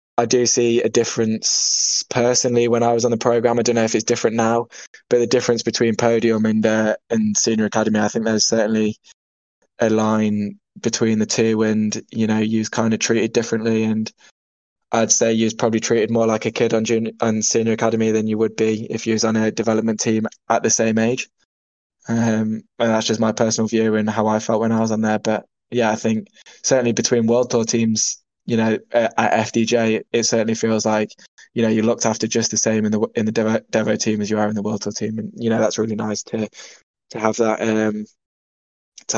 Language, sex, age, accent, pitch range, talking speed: English, male, 10-29, British, 110-115 Hz, 220 wpm